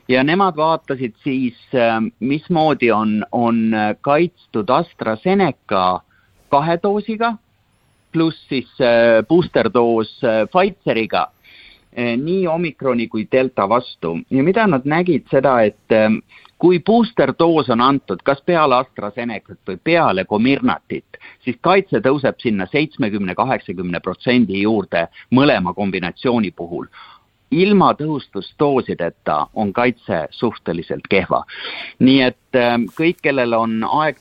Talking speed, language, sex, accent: 100 wpm, English, male, Finnish